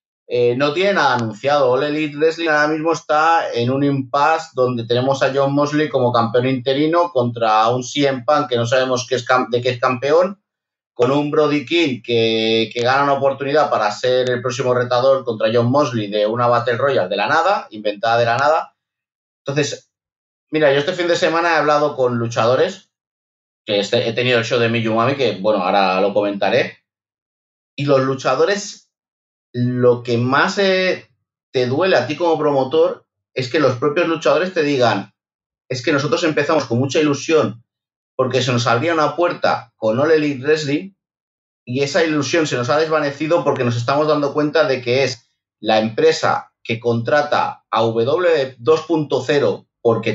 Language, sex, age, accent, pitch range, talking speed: Spanish, male, 30-49, Spanish, 120-155 Hz, 170 wpm